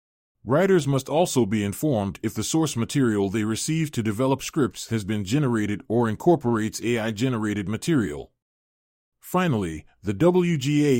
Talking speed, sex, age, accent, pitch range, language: 130 wpm, male, 30-49, American, 105-140 Hz, English